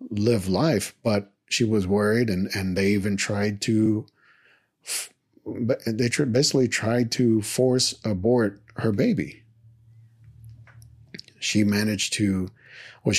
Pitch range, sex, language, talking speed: 100-120 Hz, male, English, 110 wpm